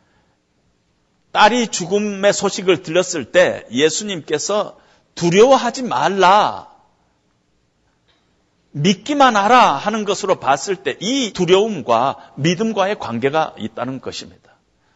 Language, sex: Korean, male